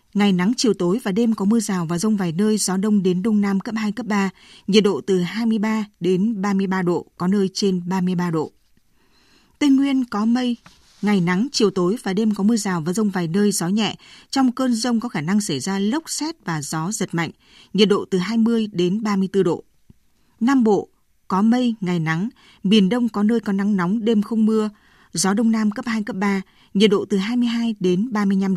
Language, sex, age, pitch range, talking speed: Vietnamese, female, 20-39, 190-225 Hz, 215 wpm